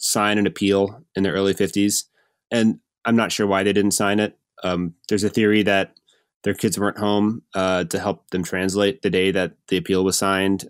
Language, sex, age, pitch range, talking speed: English, male, 20-39, 95-120 Hz, 210 wpm